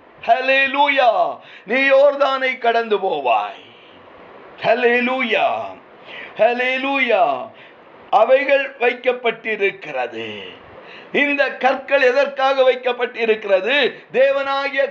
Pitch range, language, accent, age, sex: 240-285 Hz, Tamil, native, 50-69, male